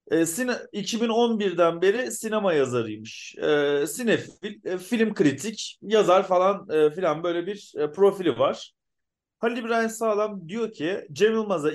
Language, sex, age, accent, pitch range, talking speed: Turkish, male, 40-59, native, 155-195 Hz, 105 wpm